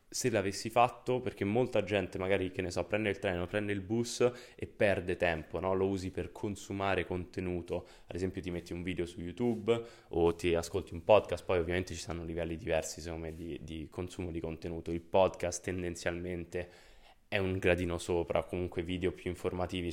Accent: native